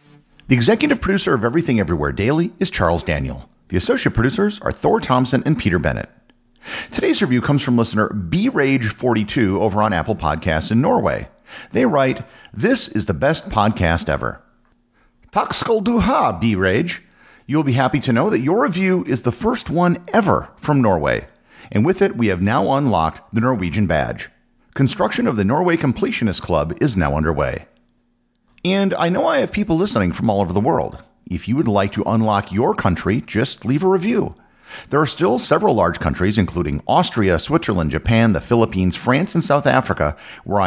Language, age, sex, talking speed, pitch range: English, 40-59, male, 175 wpm, 95-155 Hz